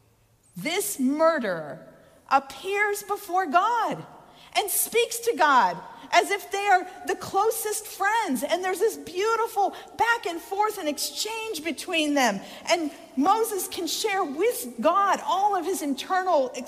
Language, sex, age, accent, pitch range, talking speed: English, female, 50-69, American, 235-350 Hz, 135 wpm